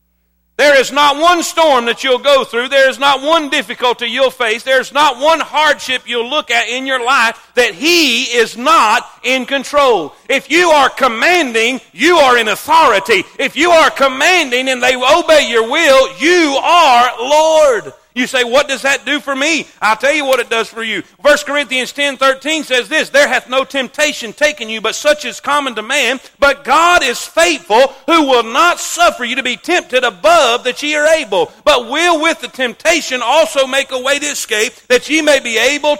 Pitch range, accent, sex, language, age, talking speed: 245-300 Hz, American, male, English, 40-59, 200 wpm